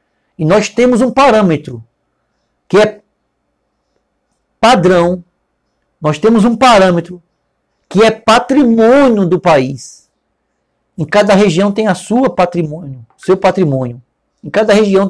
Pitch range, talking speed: 165-215 Hz, 105 wpm